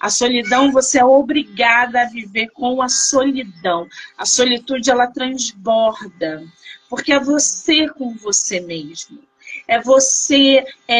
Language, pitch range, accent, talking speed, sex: Portuguese, 225-280 Hz, Brazilian, 125 wpm, female